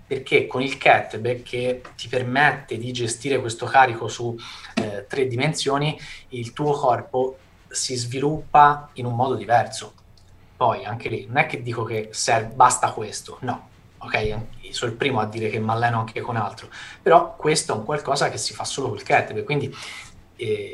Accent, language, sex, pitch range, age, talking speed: native, Italian, male, 110-135 Hz, 20-39, 175 wpm